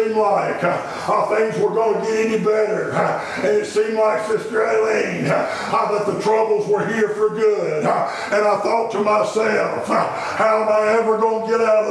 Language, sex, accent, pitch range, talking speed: English, male, American, 220-260 Hz, 205 wpm